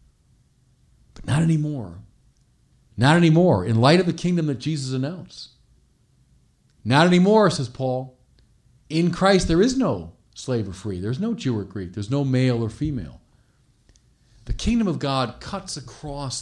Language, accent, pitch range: English, American, 110-145 Hz